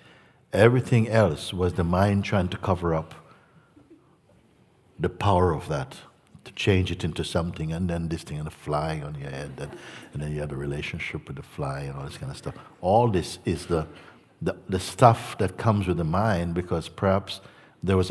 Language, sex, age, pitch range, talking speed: English, male, 60-79, 85-110 Hz, 195 wpm